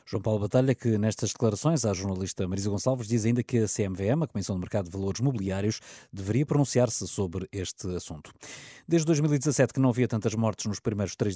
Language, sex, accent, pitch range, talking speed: Portuguese, male, Portuguese, 100-125 Hz, 195 wpm